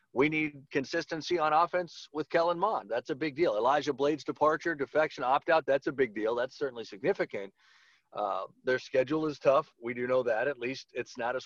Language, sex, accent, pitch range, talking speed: English, male, American, 140-180 Hz, 200 wpm